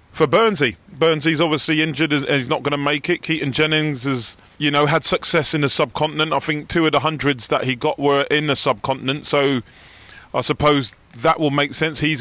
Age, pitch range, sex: 20-39, 115-145 Hz, male